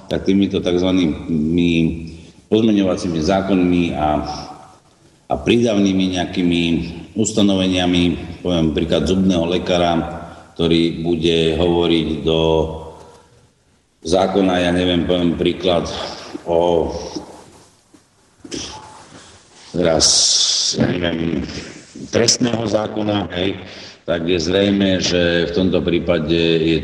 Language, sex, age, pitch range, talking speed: Slovak, male, 50-69, 85-95 Hz, 85 wpm